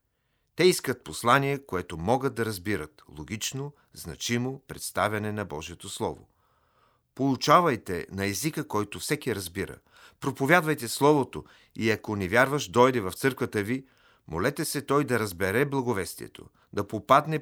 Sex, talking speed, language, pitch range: male, 130 wpm, Bulgarian, 105-140 Hz